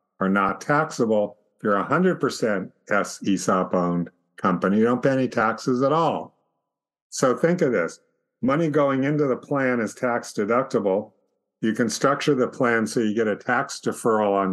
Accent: American